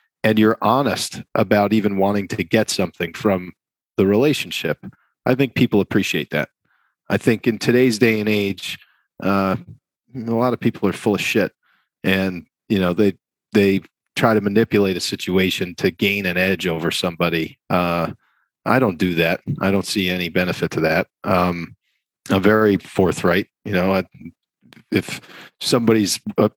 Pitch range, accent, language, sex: 95-115 Hz, American, Chinese, male